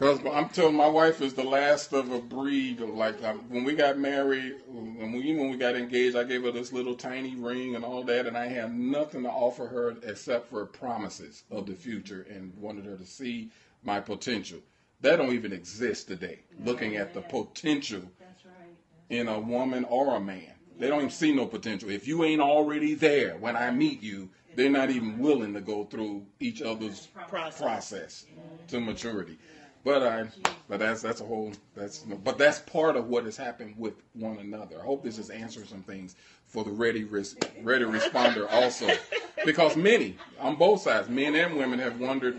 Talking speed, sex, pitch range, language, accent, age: 190 wpm, male, 110-135 Hz, English, American, 40-59